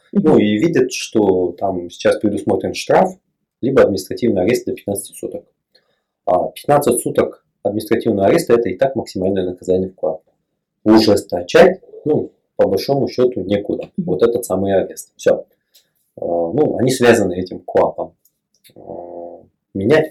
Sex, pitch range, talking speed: male, 90-135 Hz, 130 wpm